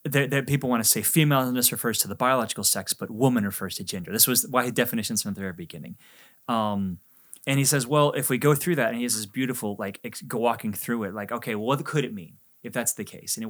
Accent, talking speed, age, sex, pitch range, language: American, 255 wpm, 20-39, male, 105-145 Hz, English